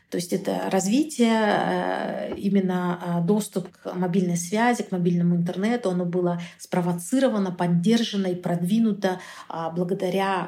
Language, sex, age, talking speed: Russian, female, 40-59, 110 wpm